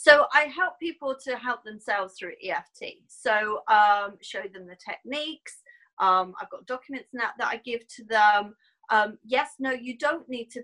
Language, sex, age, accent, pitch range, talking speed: English, female, 30-49, British, 205-265 Hz, 185 wpm